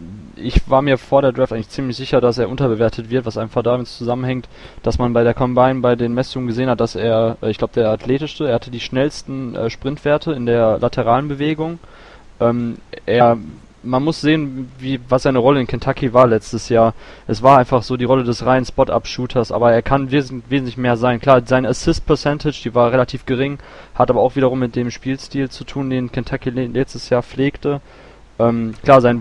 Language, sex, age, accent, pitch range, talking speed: German, male, 20-39, German, 115-130 Hz, 195 wpm